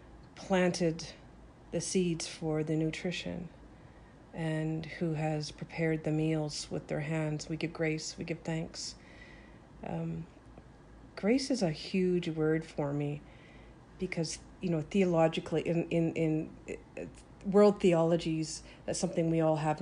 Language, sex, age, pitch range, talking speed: English, female, 40-59, 155-170 Hz, 130 wpm